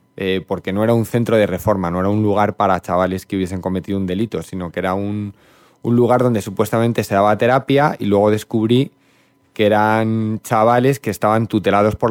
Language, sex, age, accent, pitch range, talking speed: Spanish, male, 20-39, Spanish, 100-115 Hz, 200 wpm